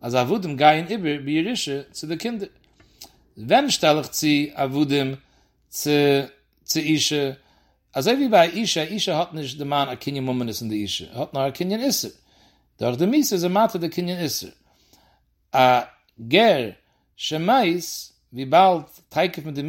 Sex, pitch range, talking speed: male, 135-180 Hz, 100 wpm